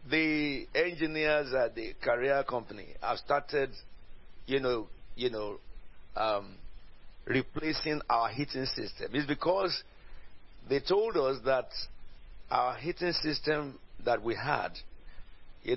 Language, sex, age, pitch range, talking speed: English, male, 50-69, 110-145 Hz, 115 wpm